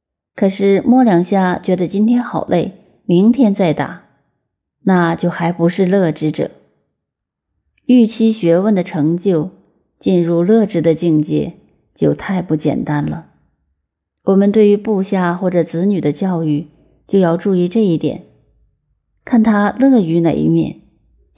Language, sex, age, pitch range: Chinese, female, 30-49, 155-200 Hz